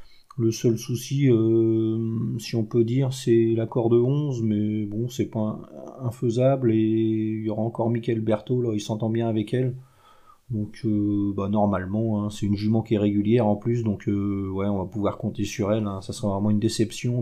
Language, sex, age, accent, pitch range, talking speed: French, male, 30-49, French, 110-130 Hz, 200 wpm